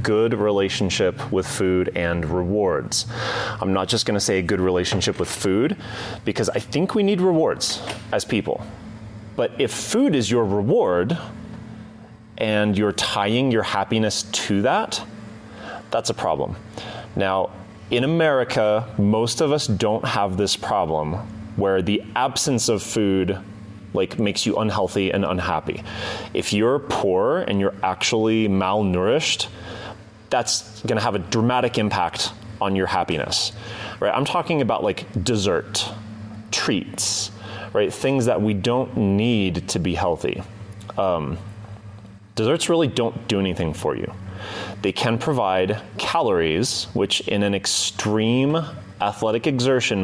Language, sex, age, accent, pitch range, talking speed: English, male, 30-49, American, 100-115 Hz, 135 wpm